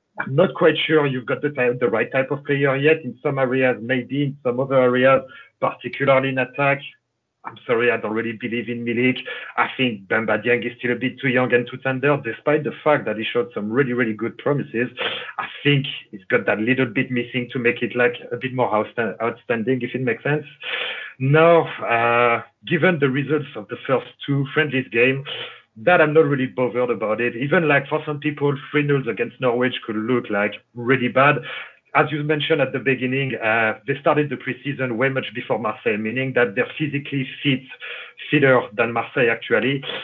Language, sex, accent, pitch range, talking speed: English, male, French, 120-145 Hz, 195 wpm